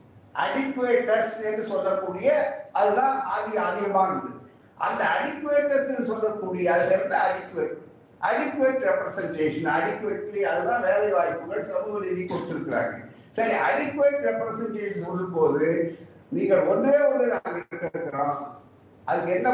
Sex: male